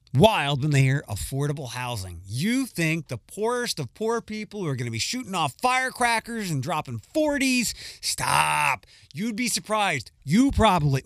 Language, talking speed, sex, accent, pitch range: English, 165 wpm, male, American, 120-170 Hz